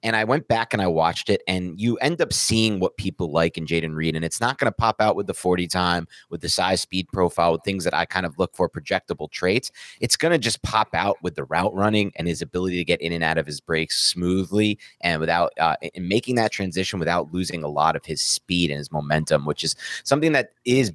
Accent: American